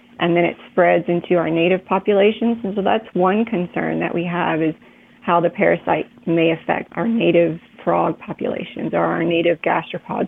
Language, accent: English, American